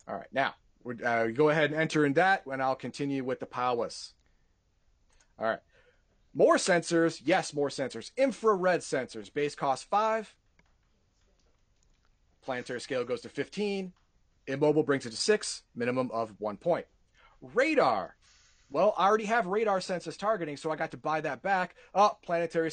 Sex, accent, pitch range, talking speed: male, American, 130-185 Hz, 160 wpm